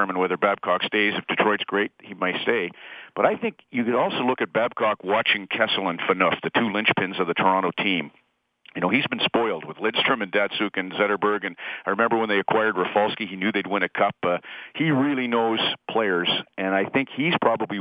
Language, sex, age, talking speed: English, male, 50-69, 210 wpm